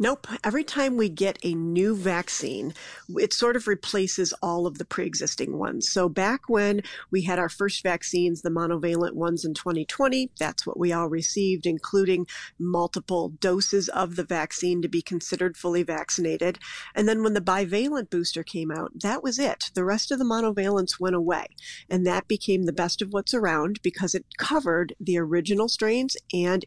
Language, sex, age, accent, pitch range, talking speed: English, female, 40-59, American, 170-200 Hz, 180 wpm